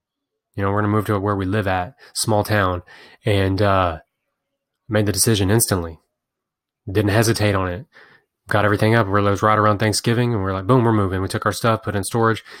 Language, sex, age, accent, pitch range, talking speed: English, male, 20-39, American, 105-120 Hz, 210 wpm